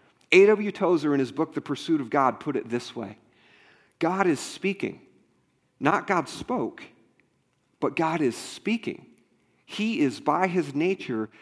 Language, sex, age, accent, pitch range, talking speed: English, male, 40-59, American, 135-195 Hz, 145 wpm